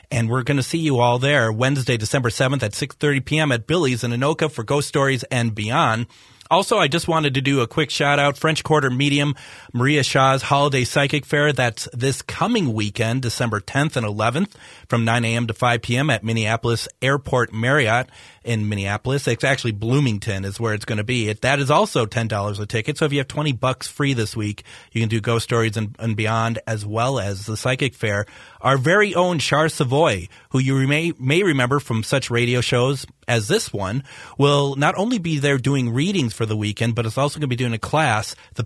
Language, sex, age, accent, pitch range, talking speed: English, male, 30-49, American, 115-145 Hz, 210 wpm